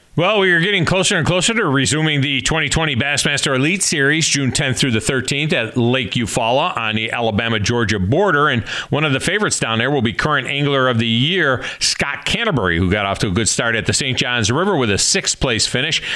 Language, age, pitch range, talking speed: English, 40-59, 115-145 Hz, 220 wpm